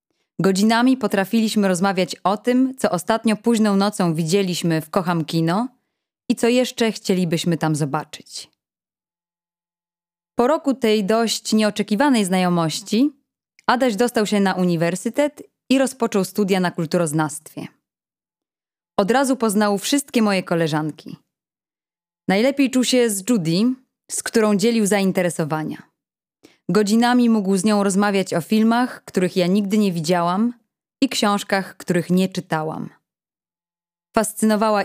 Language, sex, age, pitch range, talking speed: Polish, female, 20-39, 175-230 Hz, 115 wpm